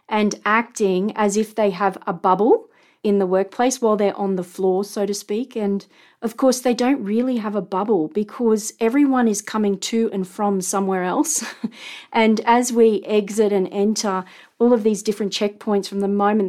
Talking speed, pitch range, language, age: 185 wpm, 195-220 Hz, English, 40-59